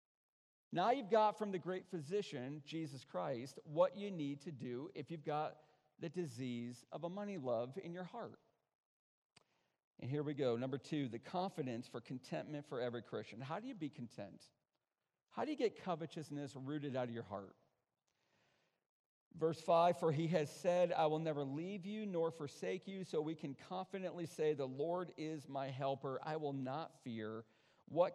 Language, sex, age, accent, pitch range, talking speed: English, male, 40-59, American, 140-205 Hz, 175 wpm